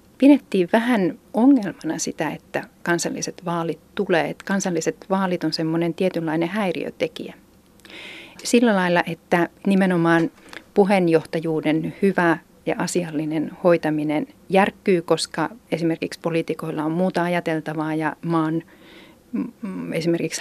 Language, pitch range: Finnish, 165-190 Hz